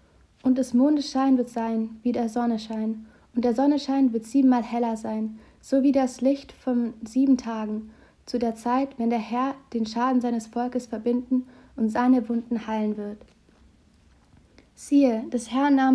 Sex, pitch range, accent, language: female, 230-260 Hz, German, German